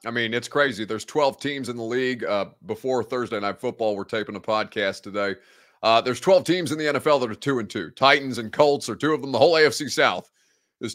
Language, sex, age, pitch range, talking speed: English, male, 30-49, 110-130 Hz, 245 wpm